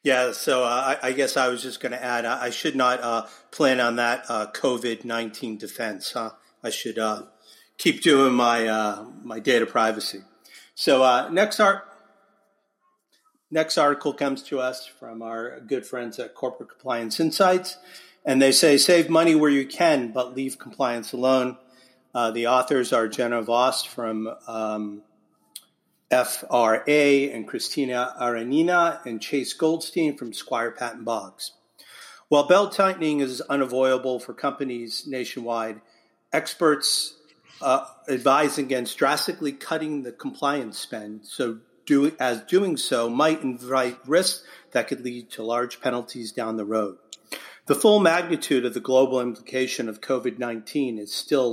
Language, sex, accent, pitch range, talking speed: English, male, American, 115-145 Hz, 145 wpm